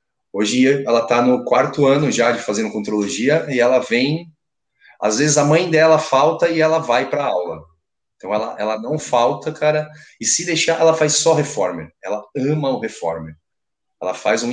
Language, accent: Portuguese, Brazilian